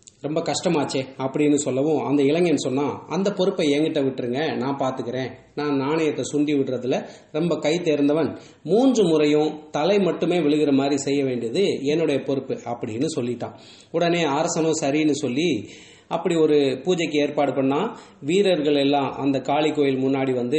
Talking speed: 130 wpm